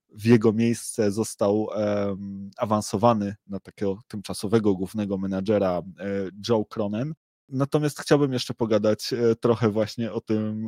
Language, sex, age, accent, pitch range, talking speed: Polish, male, 20-39, native, 105-120 Hz, 130 wpm